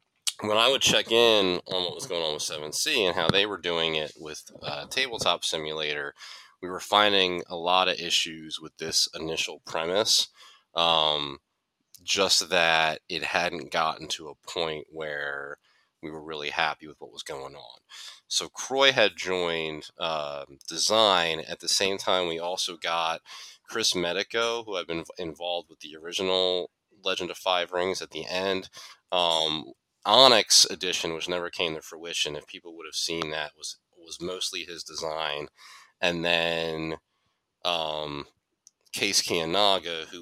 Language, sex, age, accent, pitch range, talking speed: English, male, 30-49, American, 80-95 Hz, 160 wpm